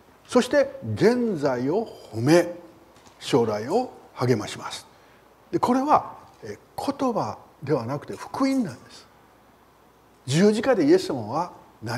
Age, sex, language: 60-79, male, Japanese